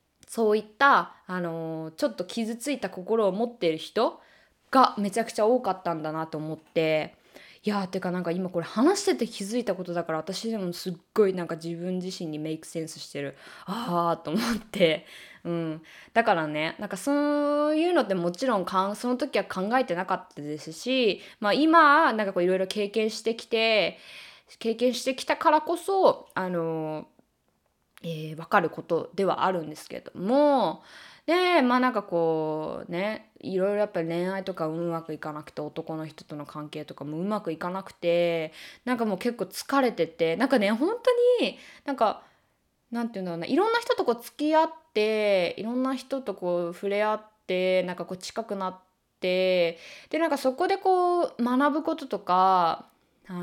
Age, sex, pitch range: 20-39, female, 170-255 Hz